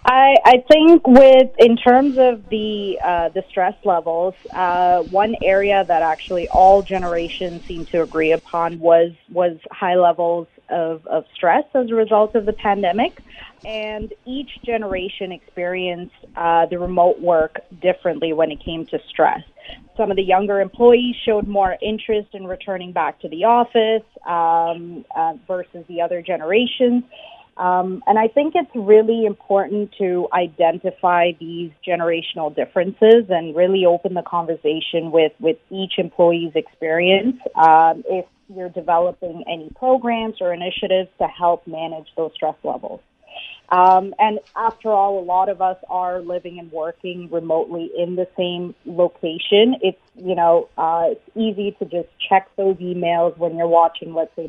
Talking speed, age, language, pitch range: 155 wpm, 30-49, English, 170-210 Hz